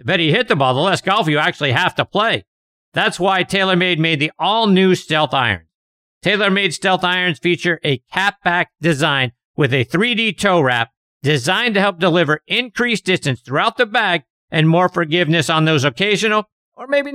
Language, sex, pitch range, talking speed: English, male, 135-190 Hz, 180 wpm